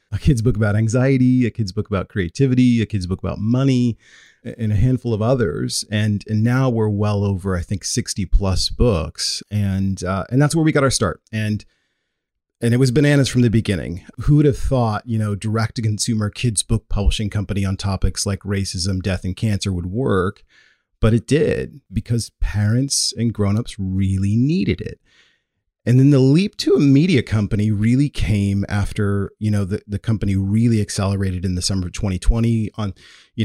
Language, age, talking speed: English, 40-59, 190 wpm